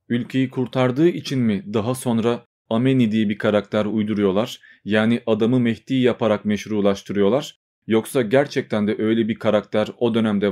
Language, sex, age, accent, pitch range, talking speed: Turkish, male, 40-59, native, 110-140 Hz, 135 wpm